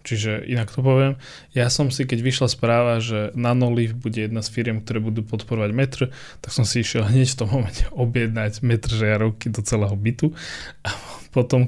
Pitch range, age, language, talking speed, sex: 110-130 Hz, 20-39, Slovak, 185 wpm, male